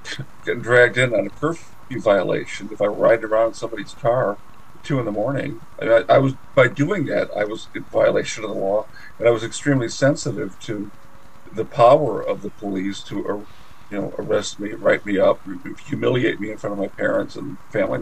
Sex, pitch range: male, 105-130 Hz